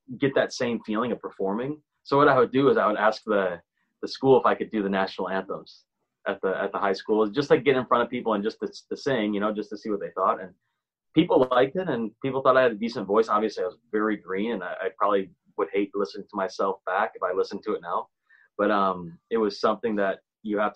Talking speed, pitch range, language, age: 270 wpm, 100-120 Hz, English, 20-39